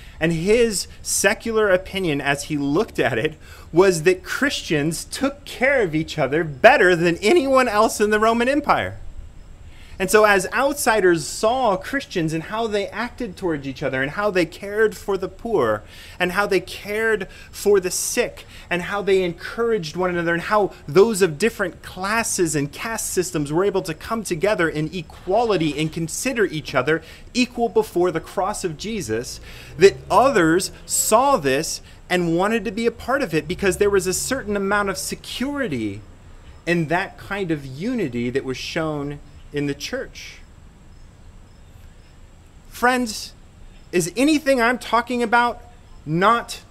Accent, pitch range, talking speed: American, 140-215 Hz, 155 wpm